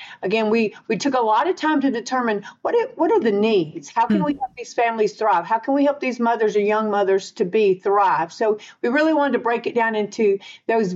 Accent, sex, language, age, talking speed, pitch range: American, female, English, 50-69, 245 wpm, 195-245 Hz